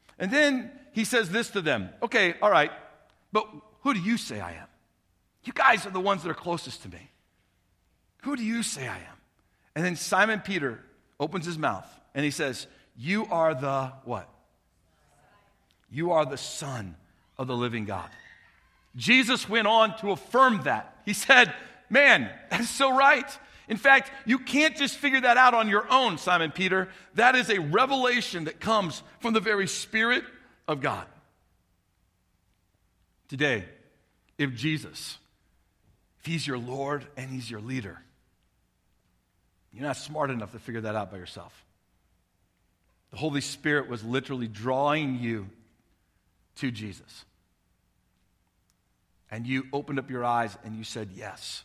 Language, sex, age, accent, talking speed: English, male, 50-69, American, 155 wpm